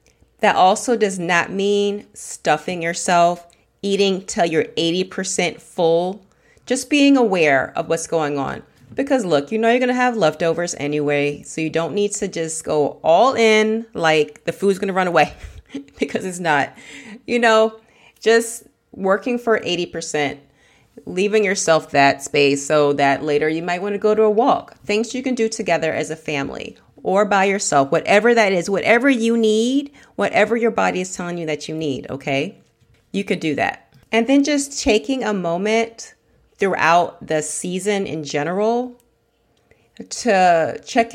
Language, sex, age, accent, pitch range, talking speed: English, female, 30-49, American, 165-225 Hz, 160 wpm